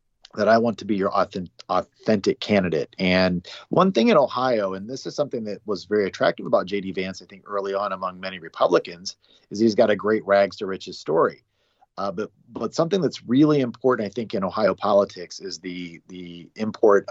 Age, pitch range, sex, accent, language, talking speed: 40-59, 90-105 Hz, male, American, English, 195 wpm